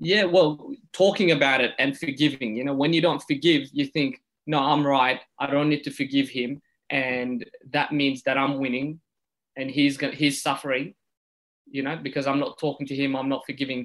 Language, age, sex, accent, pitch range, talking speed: English, 20-39, male, Australian, 130-145 Hz, 200 wpm